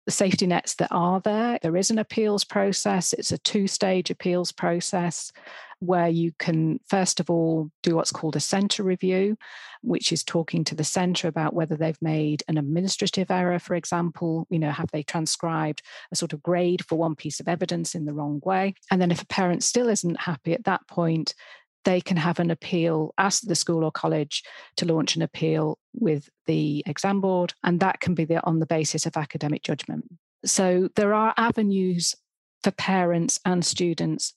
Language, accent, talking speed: English, British, 190 wpm